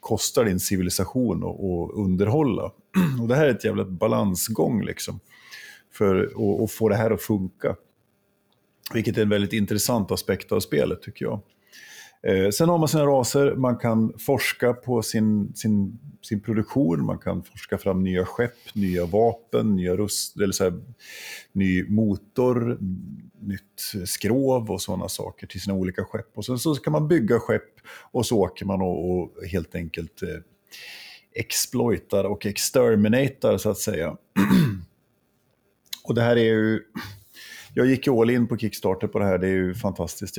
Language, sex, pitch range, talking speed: Swedish, male, 95-115 Hz, 160 wpm